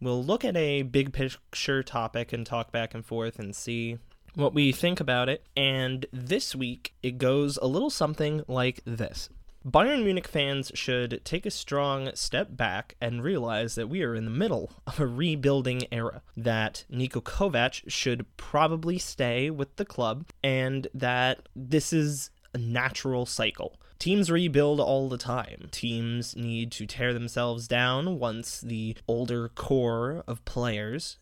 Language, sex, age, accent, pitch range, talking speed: English, male, 20-39, American, 115-140 Hz, 160 wpm